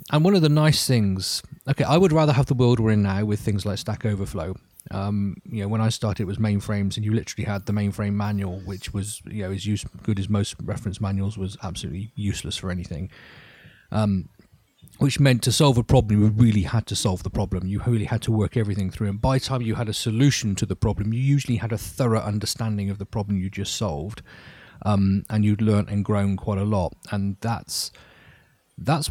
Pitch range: 100-120 Hz